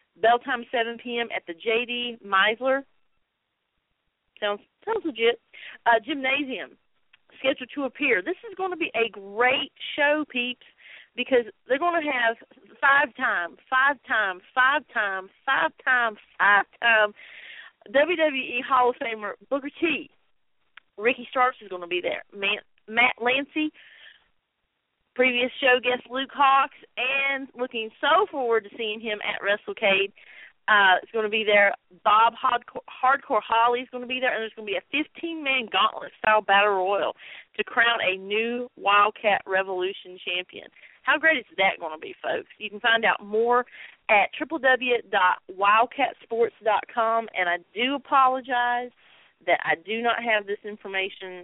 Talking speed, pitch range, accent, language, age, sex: 150 wpm, 205-270 Hz, American, English, 40-59, female